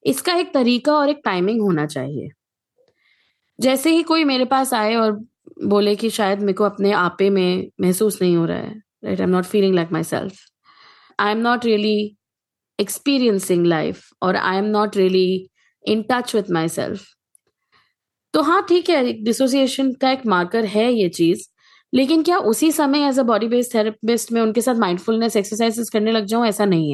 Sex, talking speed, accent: female, 180 wpm, native